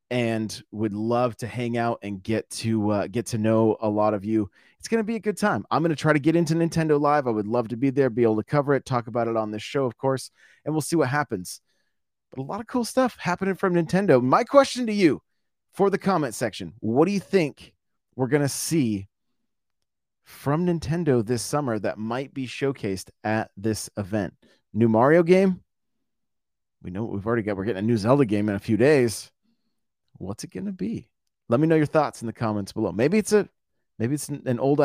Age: 30-49